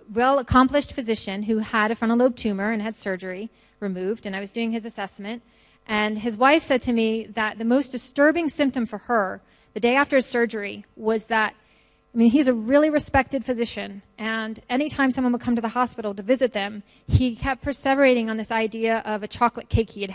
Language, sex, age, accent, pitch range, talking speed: English, female, 30-49, American, 205-240 Hz, 205 wpm